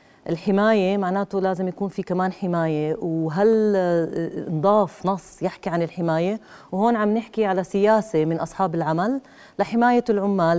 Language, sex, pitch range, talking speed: Arabic, female, 180-225 Hz, 130 wpm